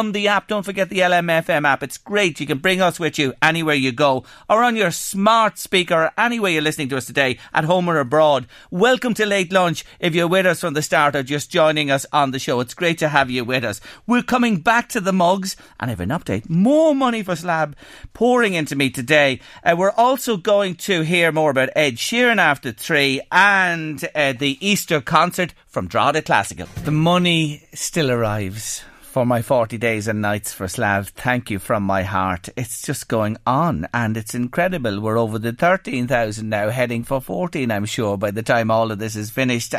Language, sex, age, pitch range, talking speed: English, male, 40-59, 120-175 Hz, 210 wpm